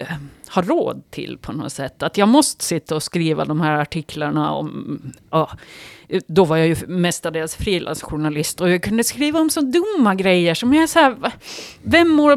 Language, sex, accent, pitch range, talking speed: Swedish, female, native, 160-225 Hz, 180 wpm